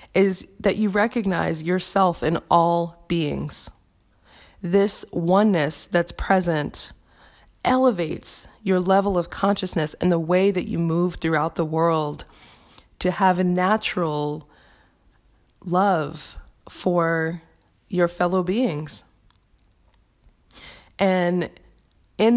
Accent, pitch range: American, 160-195 Hz